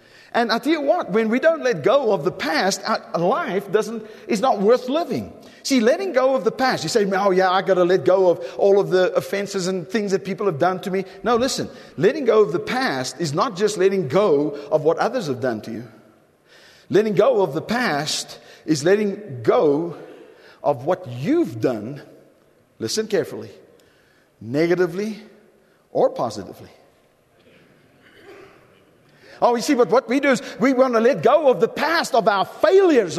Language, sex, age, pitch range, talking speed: English, male, 50-69, 195-295 Hz, 190 wpm